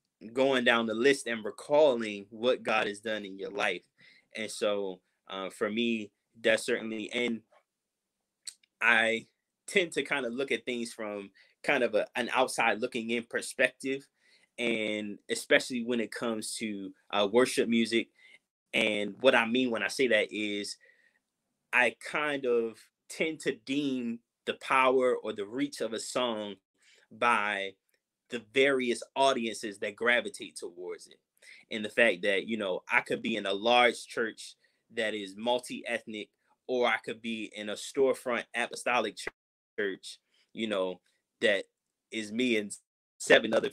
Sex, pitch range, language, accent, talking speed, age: male, 110-130 Hz, English, American, 150 wpm, 20-39